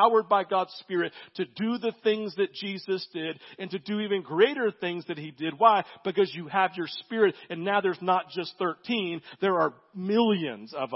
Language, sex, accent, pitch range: English, male, American, 175-225 Hz